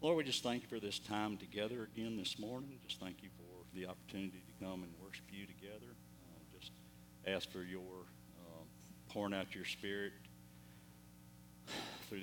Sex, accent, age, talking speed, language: male, American, 60-79, 170 wpm, English